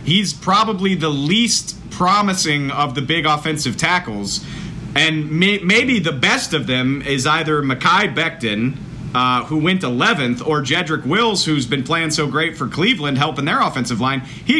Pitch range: 125-165 Hz